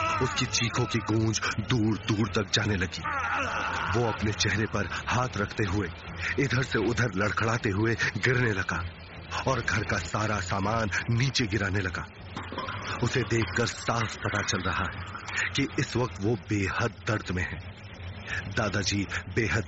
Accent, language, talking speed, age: native, Hindi, 150 wpm, 30-49